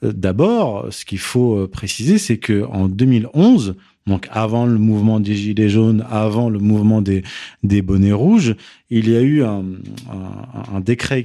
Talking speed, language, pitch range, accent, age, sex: 165 wpm, French, 105-135 Hz, French, 40-59, male